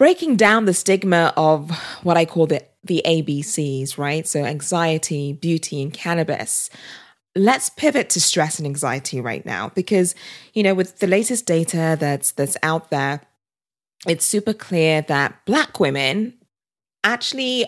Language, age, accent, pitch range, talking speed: English, 20-39, British, 155-195 Hz, 145 wpm